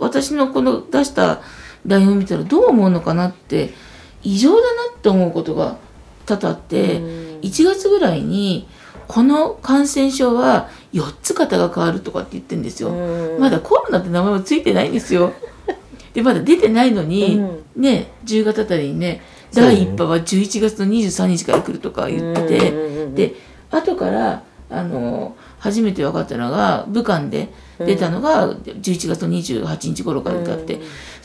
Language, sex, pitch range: Japanese, female, 180-265 Hz